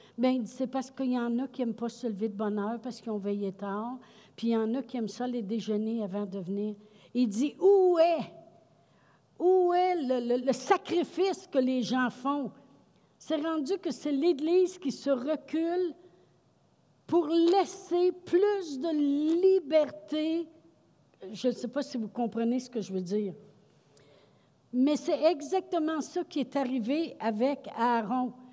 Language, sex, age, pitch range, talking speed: French, female, 60-79, 245-335 Hz, 170 wpm